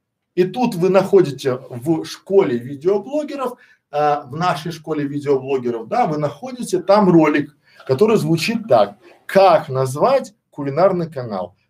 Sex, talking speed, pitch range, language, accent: male, 125 wpm, 150-205 Hz, Russian, native